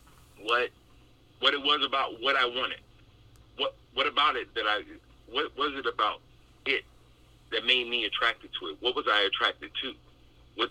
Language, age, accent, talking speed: English, 40-59, American, 175 wpm